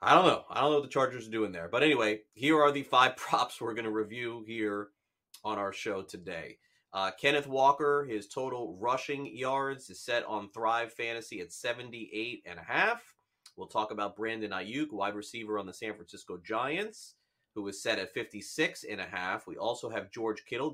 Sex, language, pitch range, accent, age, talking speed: male, English, 105-135 Hz, American, 30-49, 205 wpm